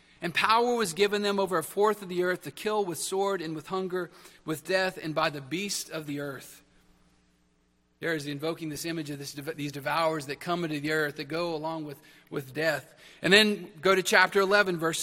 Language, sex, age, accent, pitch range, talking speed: English, male, 40-59, American, 145-185 Hz, 220 wpm